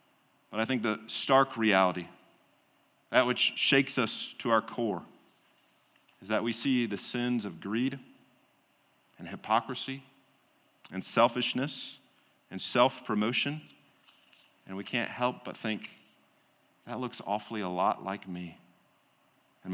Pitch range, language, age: 120-155 Hz, English, 40-59